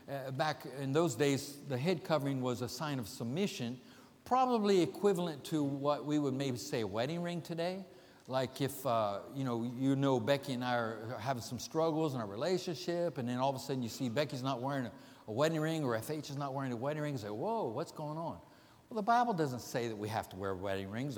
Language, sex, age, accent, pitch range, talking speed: English, male, 60-79, American, 125-165 Hz, 230 wpm